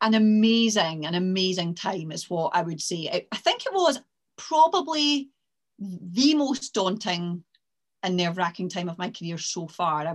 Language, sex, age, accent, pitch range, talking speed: English, female, 30-49, British, 180-225 Hz, 160 wpm